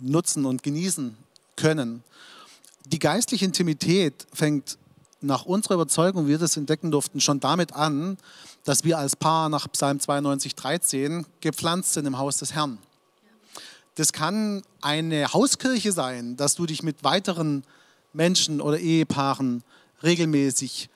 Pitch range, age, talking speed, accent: 140-170 Hz, 40-59, 130 wpm, German